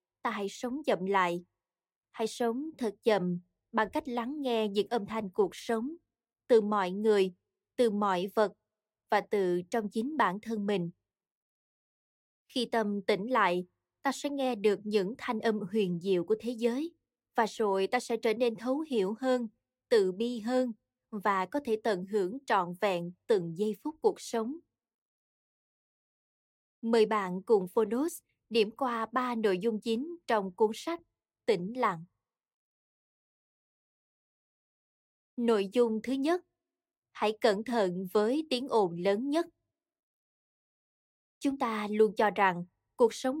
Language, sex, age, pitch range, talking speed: Vietnamese, female, 20-39, 200-250 Hz, 145 wpm